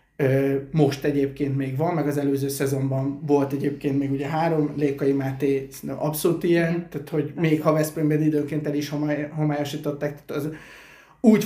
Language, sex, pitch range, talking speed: Hungarian, male, 140-160 Hz, 145 wpm